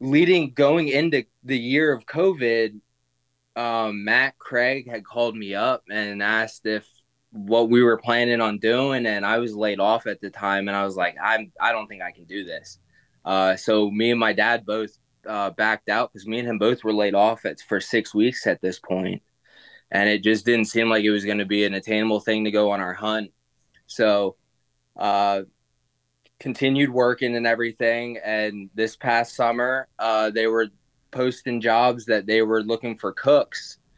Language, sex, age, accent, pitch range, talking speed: English, male, 20-39, American, 100-120 Hz, 190 wpm